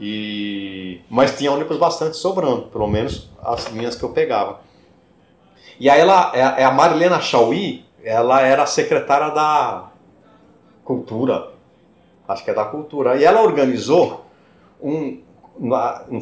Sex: male